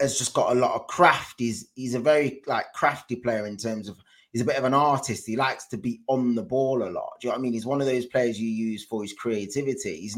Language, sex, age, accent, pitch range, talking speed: English, male, 20-39, British, 110-140 Hz, 290 wpm